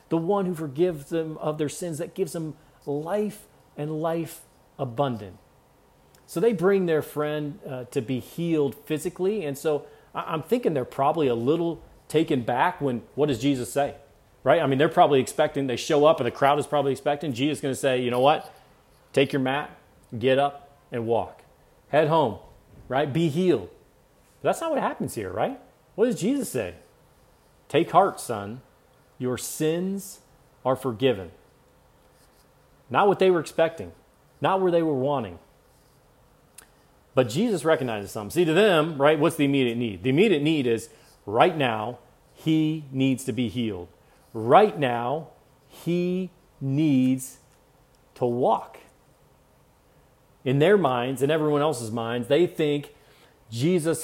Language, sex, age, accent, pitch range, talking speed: English, male, 40-59, American, 130-165 Hz, 155 wpm